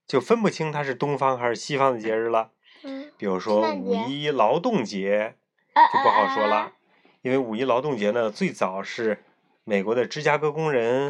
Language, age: Chinese, 20-39